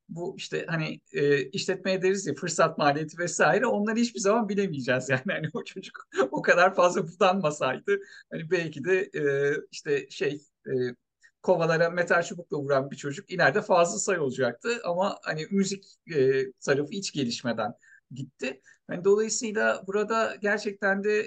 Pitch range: 140-200 Hz